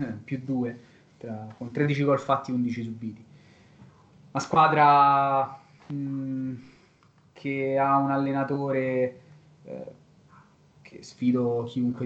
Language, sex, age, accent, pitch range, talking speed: Italian, male, 20-39, native, 115-135 Hz, 105 wpm